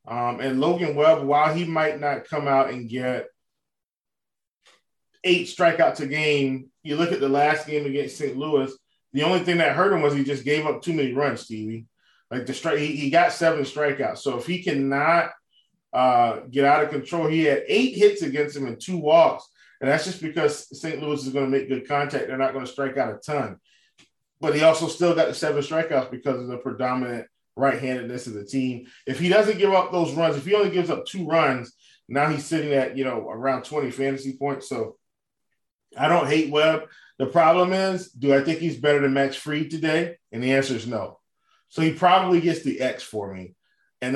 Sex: male